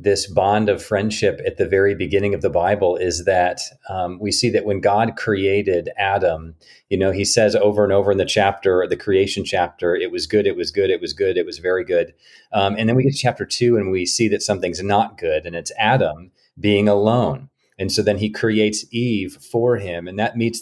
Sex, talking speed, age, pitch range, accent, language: male, 225 wpm, 40-59, 100-130 Hz, American, English